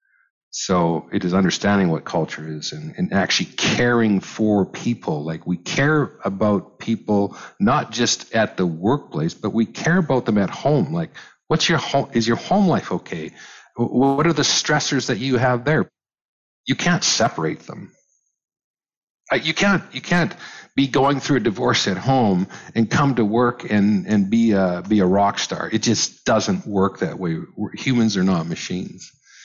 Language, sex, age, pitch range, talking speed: English, male, 50-69, 95-140 Hz, 170 wpm